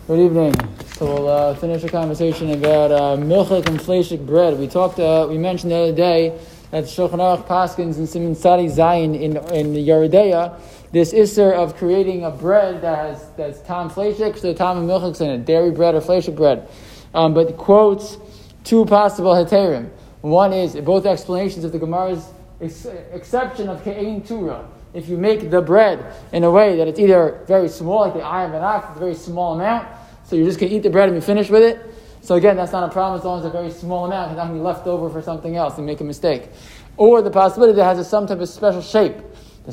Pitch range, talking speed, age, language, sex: 165-200 Hz, 225 wpm, 20-39, English, male